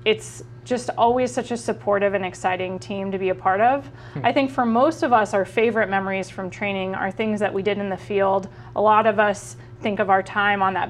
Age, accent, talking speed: 20-39, American, 235 wpm